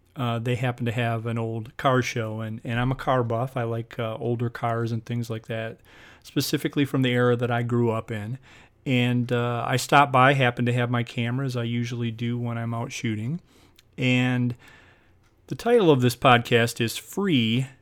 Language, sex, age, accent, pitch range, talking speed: English, male, 40-59, American, 115-130 Hz, 195 wpm